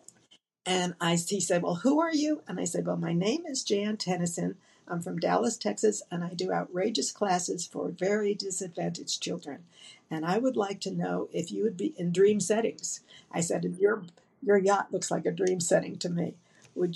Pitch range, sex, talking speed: 175-200 Hz, female, 200 wpm